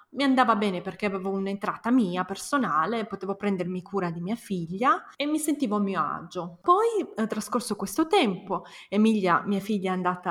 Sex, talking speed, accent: female, 170 wpm, native